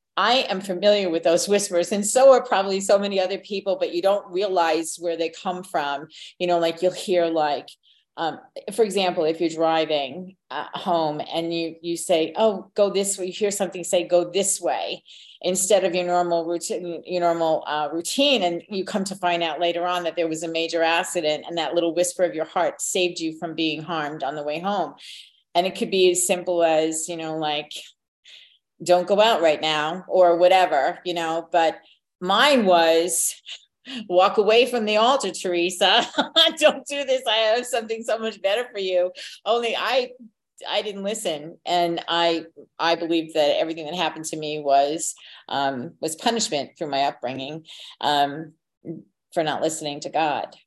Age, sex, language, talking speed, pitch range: 40-59, female, English, 185 wpm, 165-200 Hz